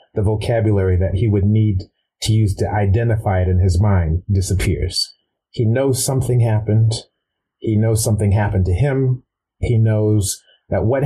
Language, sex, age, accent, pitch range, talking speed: English, male, 30-49, American, 95-110 Hz, 155 wpm